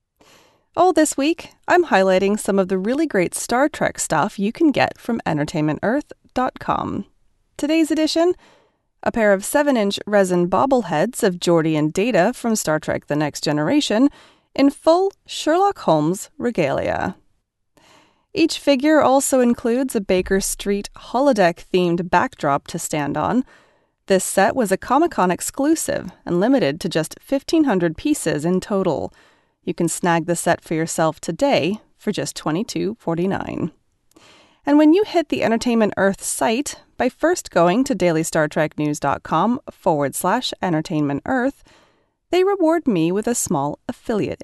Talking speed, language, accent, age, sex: 140 wpm, English, American, 30-49, female